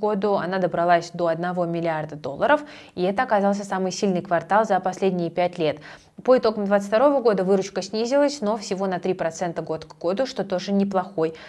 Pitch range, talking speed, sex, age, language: 180-220 Hz, 180 wpm, female, 20-39, Russian